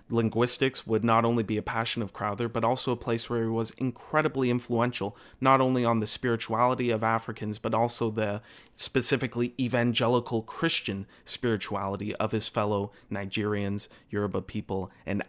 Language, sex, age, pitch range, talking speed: English, male, 30-49, 110-125 Hz, 155 wpm